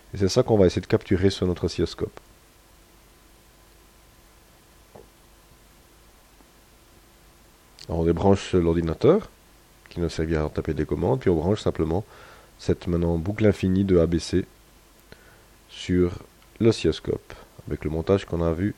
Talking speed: 130 wpm